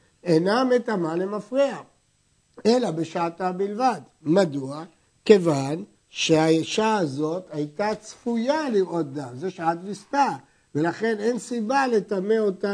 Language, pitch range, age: Hebrew, 165-225 Hz, 60-79